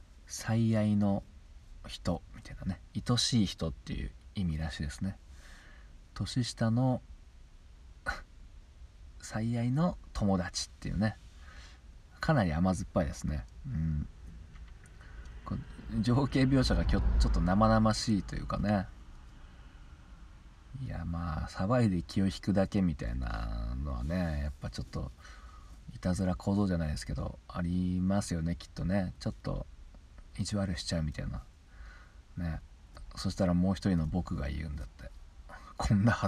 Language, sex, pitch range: Japanese, male, 75-100 Hz